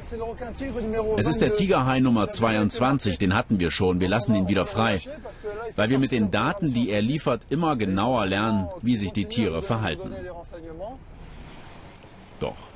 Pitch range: 85-125 Hz